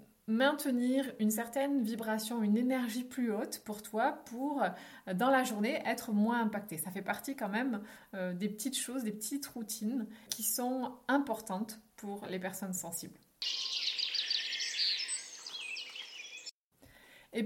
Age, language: 30-49, French